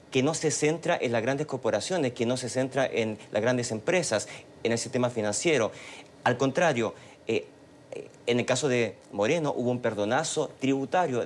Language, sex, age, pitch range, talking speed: Spanish, male, 40-59, 115-135 Hz, 170 wpm